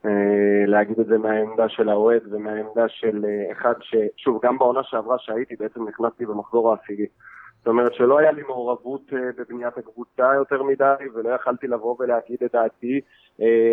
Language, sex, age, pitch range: Hebrew, male, 20-39, 115-145 Hz